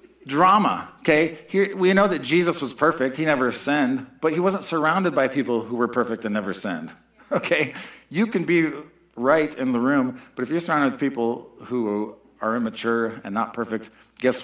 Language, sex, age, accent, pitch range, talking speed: English, male, 50-69, American, 115-190 Hz, 185 wpm